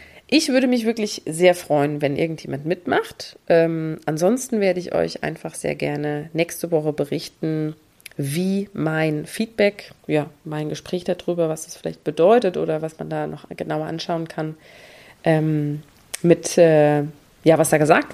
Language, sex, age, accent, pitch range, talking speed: German, female, 30-49, German, 155-195 Hz, 150 wpm